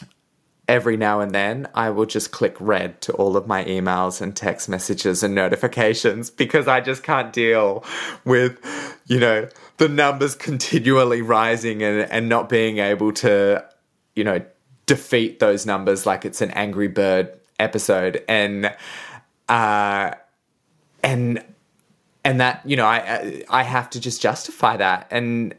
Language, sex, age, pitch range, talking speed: English, male, 20-39, 100-125 Hz, 150 wpm